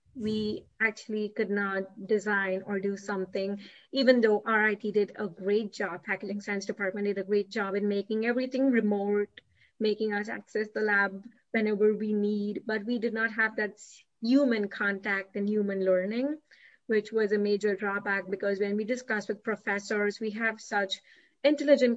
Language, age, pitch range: English, 30-49, 200-225 Hz